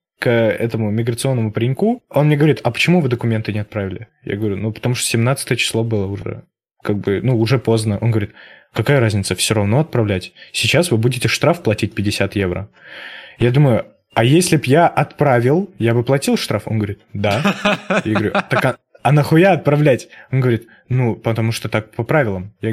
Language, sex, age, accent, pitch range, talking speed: Russian, male, 20-39, native, 110-145 Hz, 185 wpm